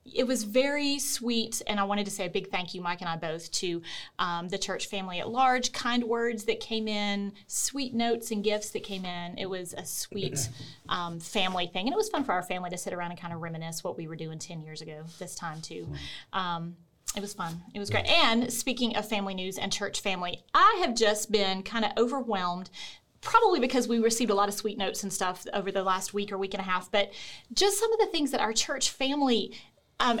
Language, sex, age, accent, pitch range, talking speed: English, female, 30-49, American, 195-250 Hz, 240 wpm